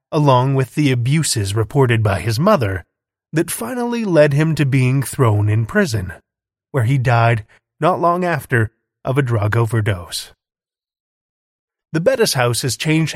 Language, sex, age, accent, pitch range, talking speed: English, male, 30-49, American, 110-155 Hz, 145 wpm